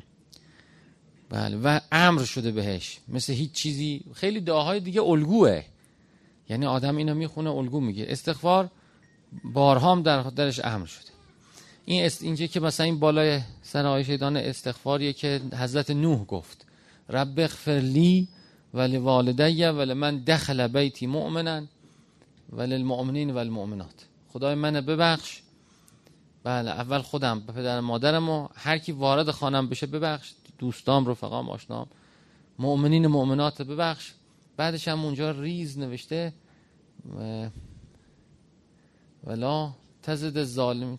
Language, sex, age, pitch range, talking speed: Persian, male, 40-59, 130-165 Hz, 115 wpm